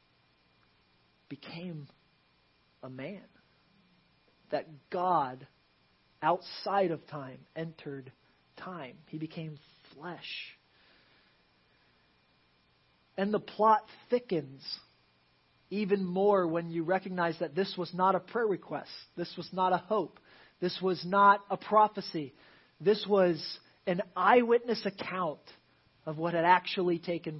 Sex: male